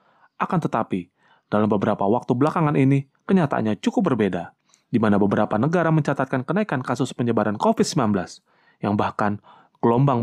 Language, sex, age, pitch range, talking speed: Indonesian, male, 30-49, 110-155 Hz, 130 wpm